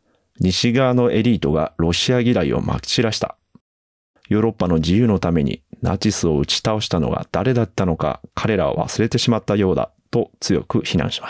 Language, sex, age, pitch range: Japanese, male, 30-49, 90-120 Hz